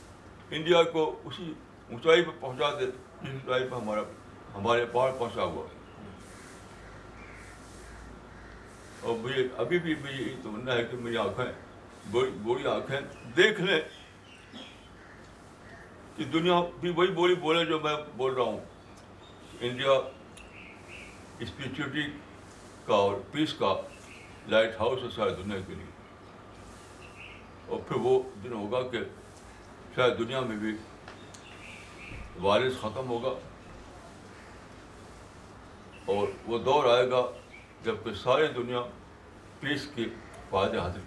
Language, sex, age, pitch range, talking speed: Urdu, male, 60-79, 100-130 Hz, 80 wpm